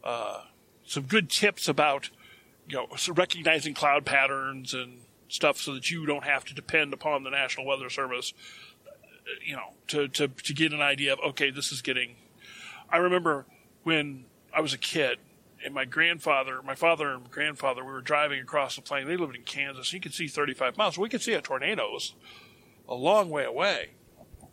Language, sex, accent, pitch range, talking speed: English, male, American, 140-180 Hz, 190 wpm